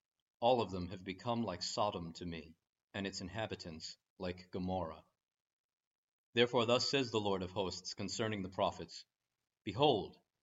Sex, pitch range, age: male, 95-120 Hz, 40-59